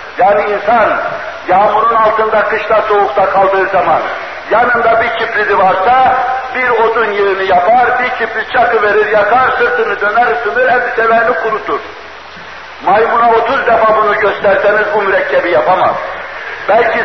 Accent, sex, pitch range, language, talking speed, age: native, male, 195-235 Hz, Turkish, 120 wpm, 60-79